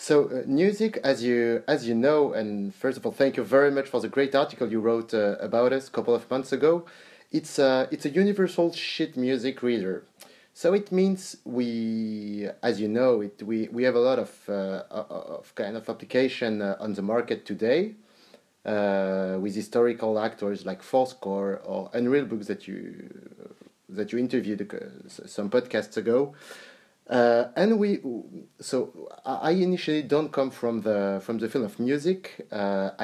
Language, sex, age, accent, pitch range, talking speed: English, male, 30-49, French, 110-150 Hz, 175 wpm